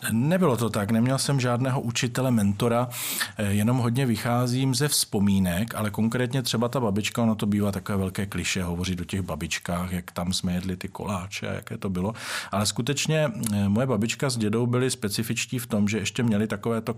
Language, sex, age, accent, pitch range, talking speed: Czech, male, 40-59, native, 100-115 Hz, 180 wpm